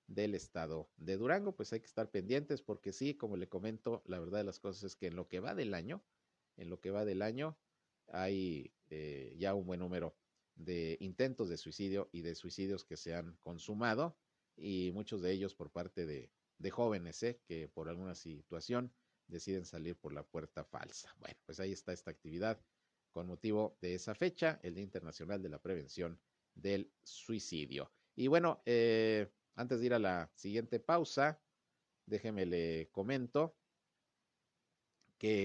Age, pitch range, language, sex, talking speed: 50-69, 90-120 Hz, Spanish, male, 175 wpm